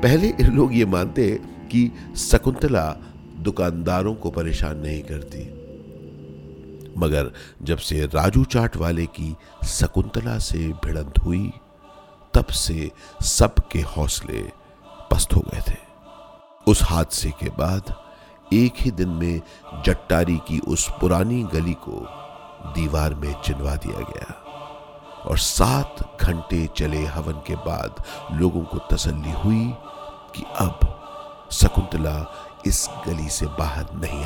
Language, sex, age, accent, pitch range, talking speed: Hindi, male, 50-69, native, 80-115 Hz, 120 wpm